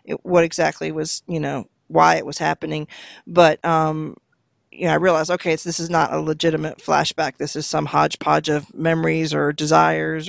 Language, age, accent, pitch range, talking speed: English, 40-59, American, 160-215 Hz, 175 wpm